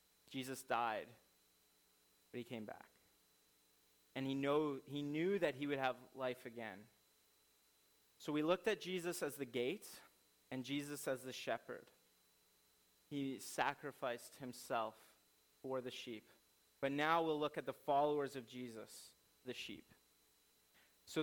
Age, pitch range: 30-49, 120-145 Hz